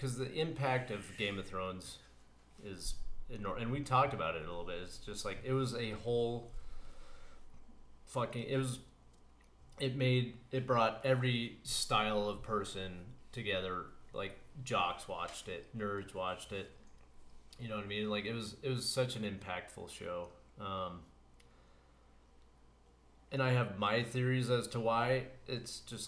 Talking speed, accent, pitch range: 155 wpm, American, 90-125 Hz